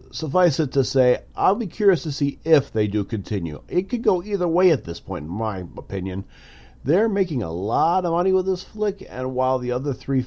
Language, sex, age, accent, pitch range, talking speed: English, male, 40-59, American, 100-140 Hz, 220 wpm